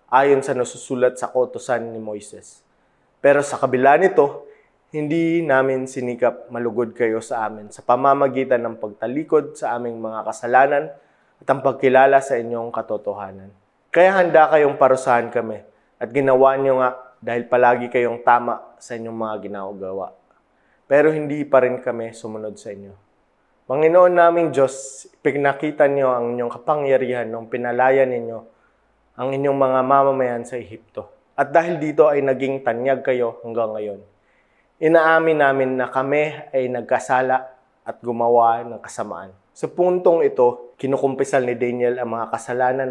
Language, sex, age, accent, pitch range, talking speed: English, male, 20-39, Filipino, 115-140 Hz, 145 wpm